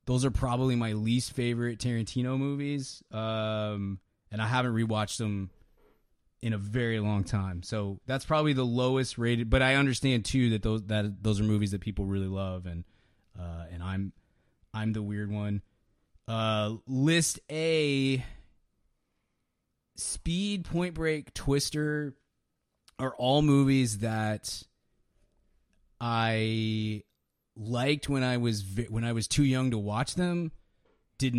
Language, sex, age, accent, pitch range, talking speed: English, male, 20-39, American, 105-130 Hz, 140 wpm